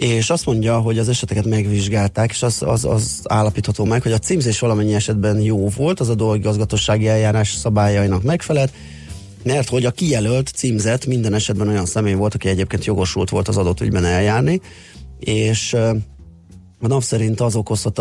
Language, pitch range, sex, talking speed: Hungarian, 100-115 Hz, male, 170 wpm